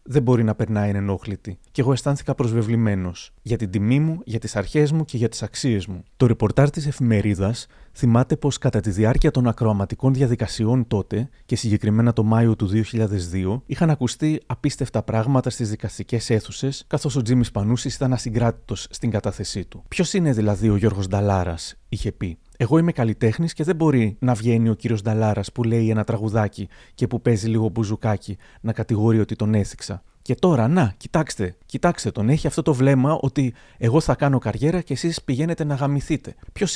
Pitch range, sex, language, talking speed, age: 110-140 Hz, male, Greek, 180 wpm, 30-49